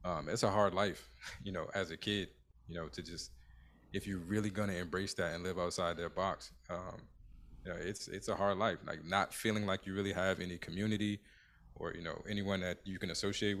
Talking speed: 220 wpm